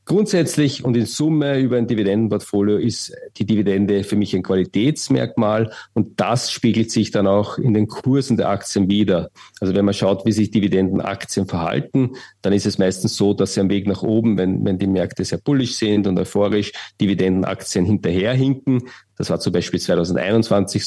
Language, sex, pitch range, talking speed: German, male, 95-115 Hz, 175 wpm